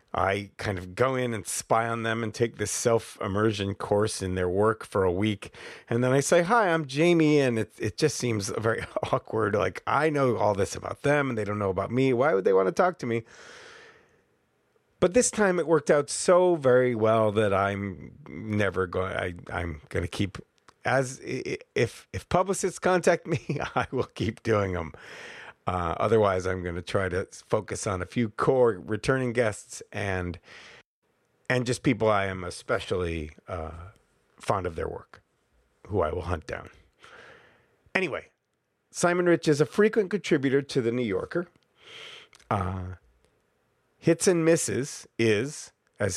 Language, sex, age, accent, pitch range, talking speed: English, male, 40-59, American, 100-155 Hz, 170 wpm